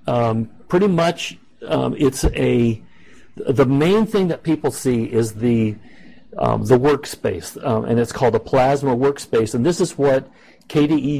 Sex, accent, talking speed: male, American, 155 wpm